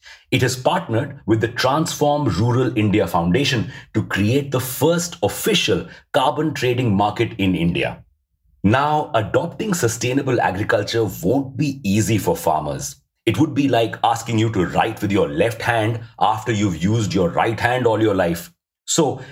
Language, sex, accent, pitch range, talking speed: English, male, Indian, 105-140 Hz, 155 wpm